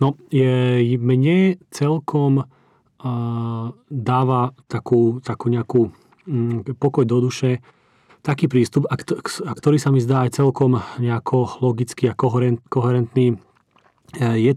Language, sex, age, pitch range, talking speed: Slovak, male, 40-59, 110-130 Hz, 95 wpm